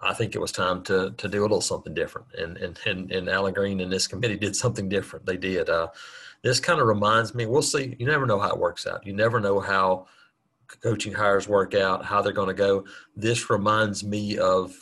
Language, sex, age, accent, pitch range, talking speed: English, male, 40-59, American, 95-115 Hz, 230 wpm